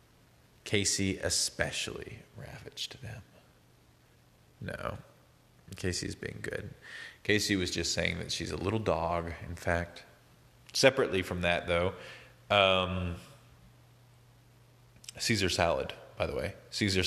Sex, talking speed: male, 105 wpm